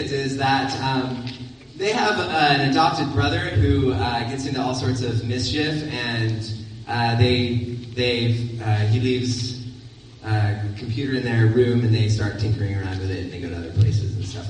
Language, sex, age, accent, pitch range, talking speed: English, male, 20-39, American, 110-135 Hz, 180 wpm